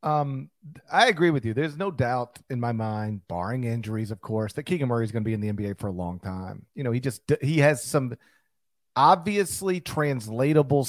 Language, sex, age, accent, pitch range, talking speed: English, male, 40-59, American, 115-160 Hz, 210 wpm